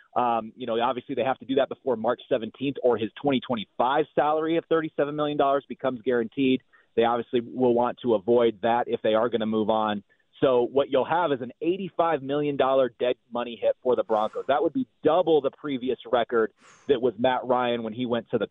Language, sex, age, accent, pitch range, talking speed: English, male, 30-49, American, 120-150 Hz, 210 wpm